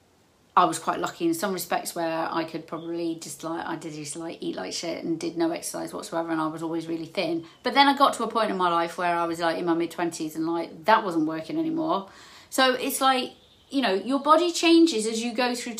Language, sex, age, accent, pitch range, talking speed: English, female, 40-59, British, 190-270 Hz, 255 wpm